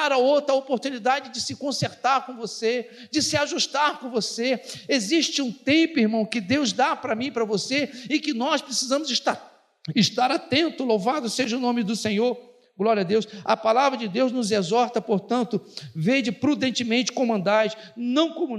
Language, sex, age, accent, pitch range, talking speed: Portuguese, male, 50-69, Brazilian, 225-275 Hz, 175 wpm